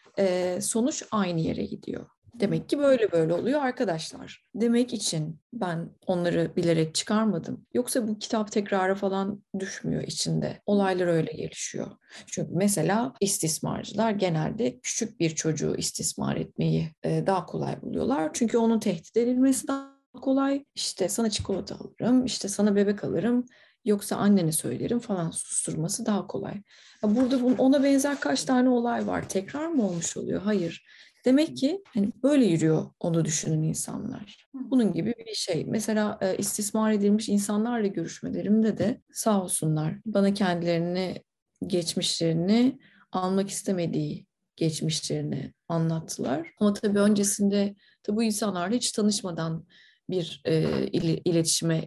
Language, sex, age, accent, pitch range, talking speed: Turkish, female, 30-49, native, 175-235 Hz, 125 wpm